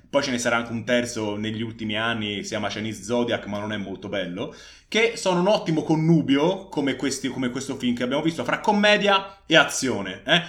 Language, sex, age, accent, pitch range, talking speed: Italian, male, 20-39, native, 115-160 Hz, 210 wpm